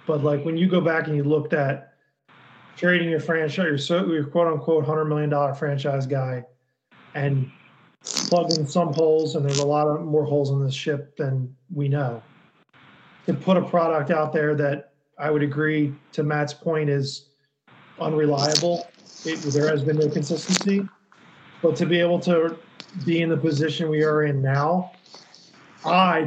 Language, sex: English, male